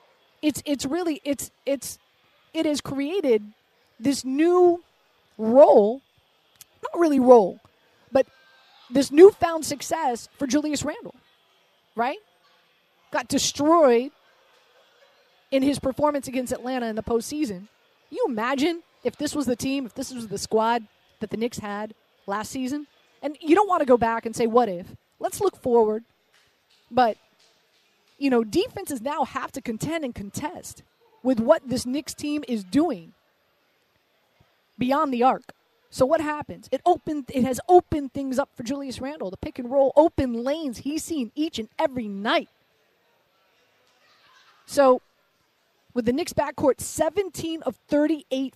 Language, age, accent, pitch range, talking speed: English, 30-49, American, 240-305 Hz, 145 wpm